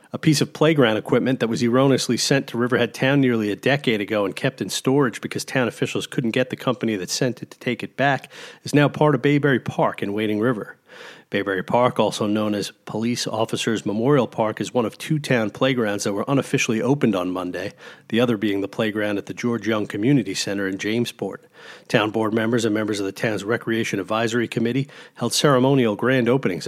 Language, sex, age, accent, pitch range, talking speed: English, male, 40-59, American, 110-135 Hz, 205 wpm